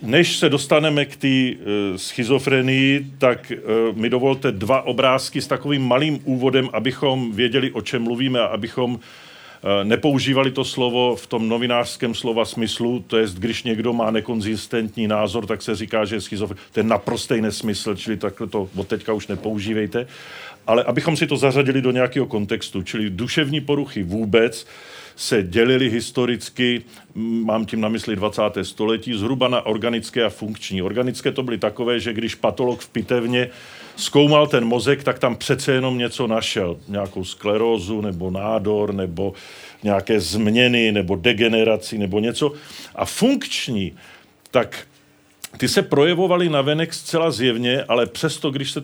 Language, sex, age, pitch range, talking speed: Czech, male, 40-59, 110-135 Hz, 150 wpm